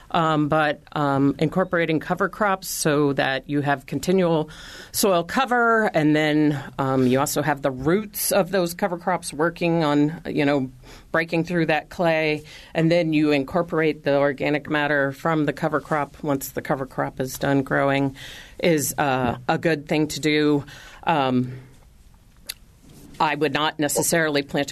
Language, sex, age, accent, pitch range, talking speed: English, female, 40-59, American, 140-165 Hz, 155 wpm